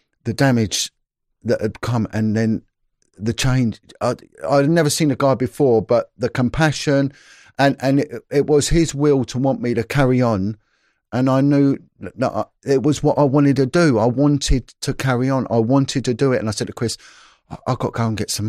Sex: male